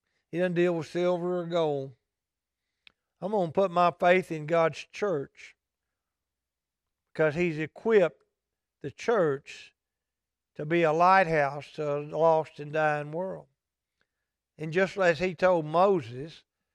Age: 50-69